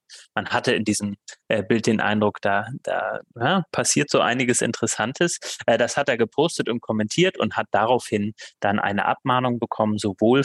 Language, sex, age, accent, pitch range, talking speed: German, male, 30-49, German, 105-120 Hz, 160 wpm